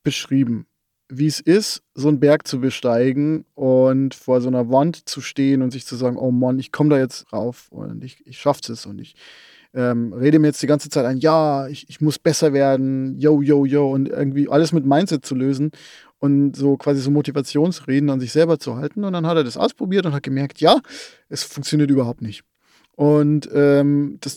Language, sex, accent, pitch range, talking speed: German, male, German, 135-160 Hz, 210 wpm